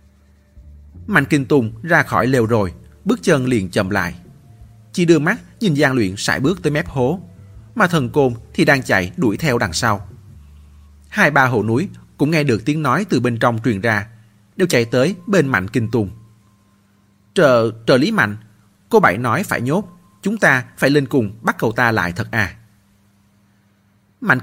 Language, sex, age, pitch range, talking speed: Vietnamese, male, 30-49, 100-135 Hz, 185 wpm